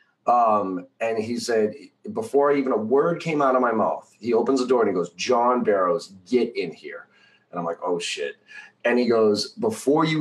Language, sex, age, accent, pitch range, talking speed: English, male, 30-49, American, 95-130 Hz, 205 wpm